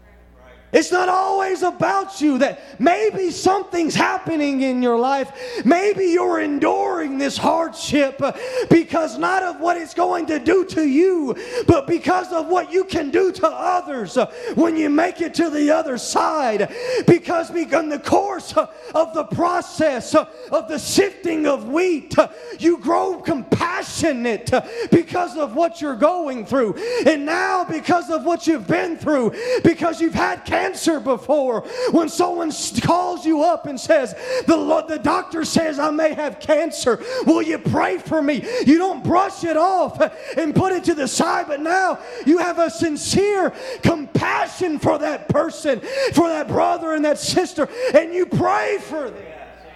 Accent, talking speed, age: American, 155 wpm, 30-49